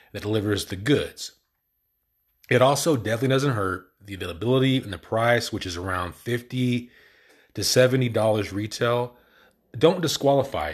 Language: English